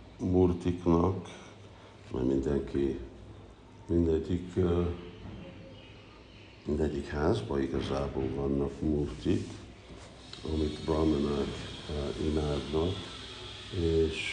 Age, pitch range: 60-79, 75-90 Hz